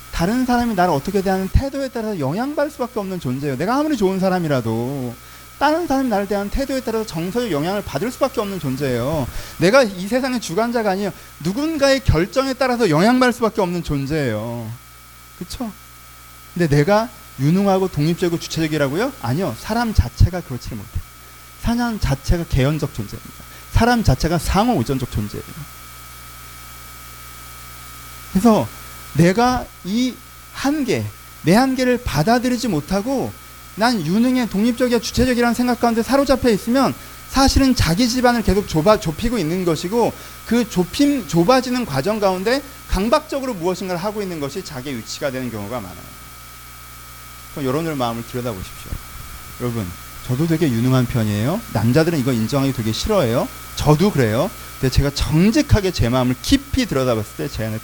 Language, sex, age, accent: Korean, male, 30-49, native